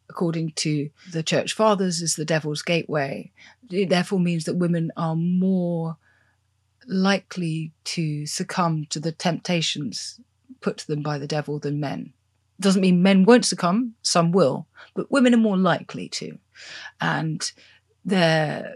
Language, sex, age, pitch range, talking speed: English, female, 30-49, 155-190 Hz, 145 wpm